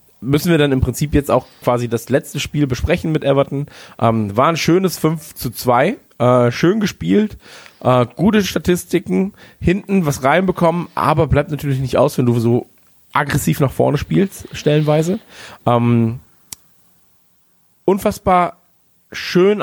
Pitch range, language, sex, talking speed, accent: 120-160 Hz, German, male, 140 wpm, German